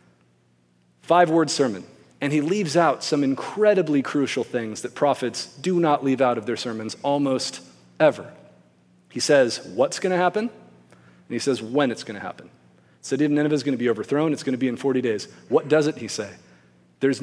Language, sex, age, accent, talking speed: English, male, 40-59, American, 195 wpm